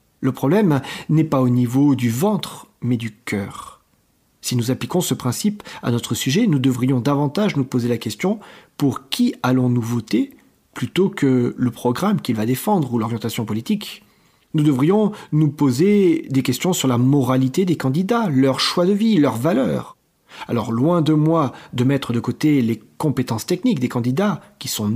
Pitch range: 125-170 Hz